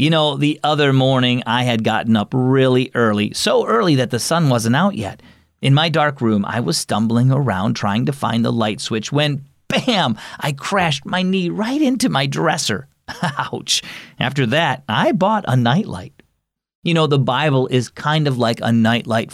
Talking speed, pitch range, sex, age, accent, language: 185 wpm, 110-160 Hz, male, 40-59, American, English